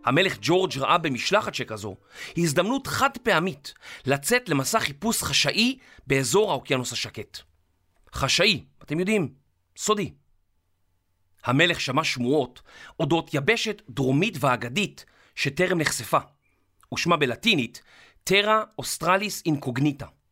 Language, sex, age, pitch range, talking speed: Hebrew, male, 40-59, 115-180 Hz, 100 wpm